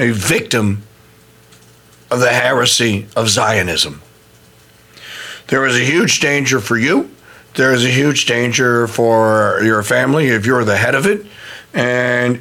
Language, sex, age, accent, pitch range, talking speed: English, male, 50-69, American, 110-145 Hz, 140 wpm